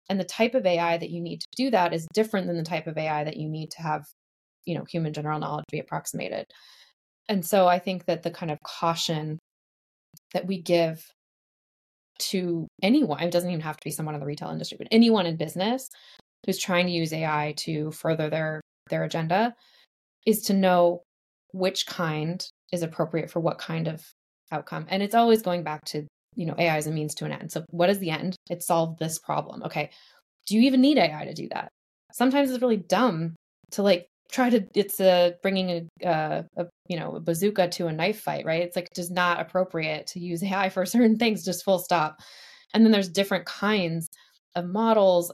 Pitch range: 160-195 Hz